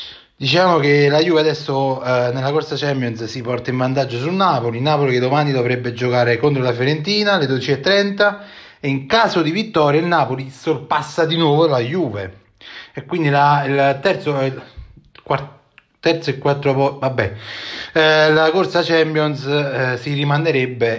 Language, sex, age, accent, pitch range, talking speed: Italian, male, 30-49, native, 125-155 Hz, 130 wpm